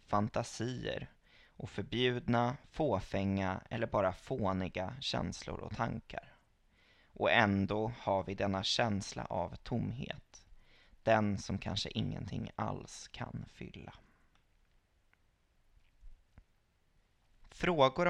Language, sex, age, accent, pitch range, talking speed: Swedish, male, 20-39, native, 100-125 Hz, 85 wpm